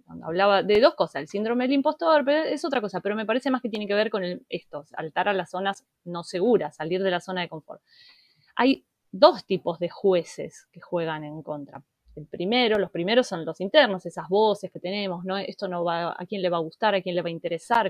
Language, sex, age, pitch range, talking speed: Spanish, female, 20-39, 180-235 Hz, 230 wpm